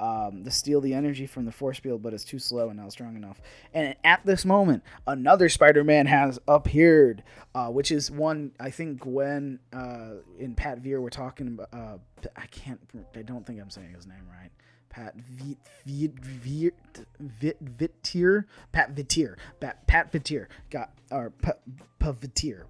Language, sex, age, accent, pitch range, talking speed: English, male, 20-39, American, 120-145 Hz, 175 wpm